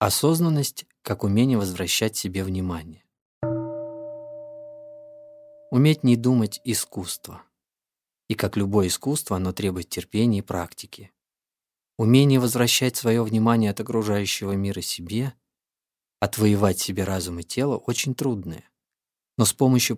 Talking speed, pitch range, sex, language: 110 wpm, 95-120 Hz, male, Russian